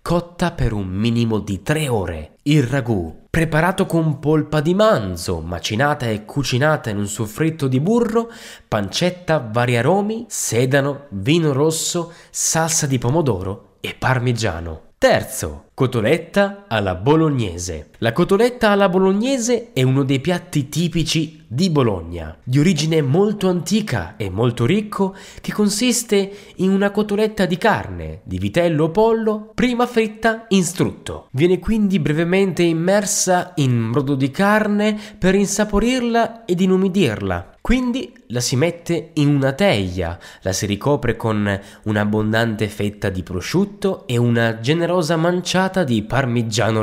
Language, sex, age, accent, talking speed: Italian, male, 20-39, native, 135 wpm